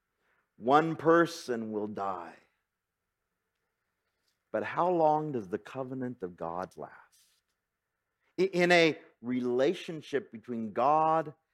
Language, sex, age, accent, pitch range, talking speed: English, male, 50-69, American, 125-185 Hz, 95 wpm